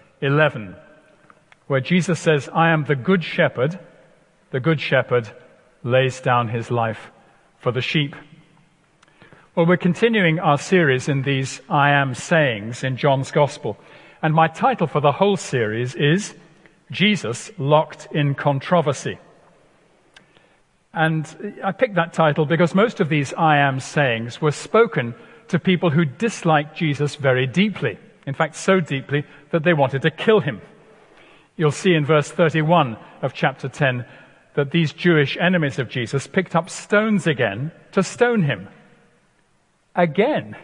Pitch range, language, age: 140-175 Hz, English, 50-69